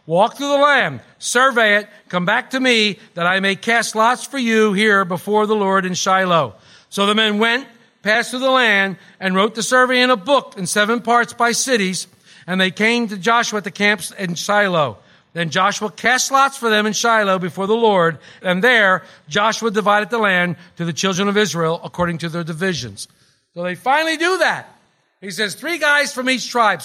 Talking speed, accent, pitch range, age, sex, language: 205 wpm, American, 180-245 Hz, 50-69, male, English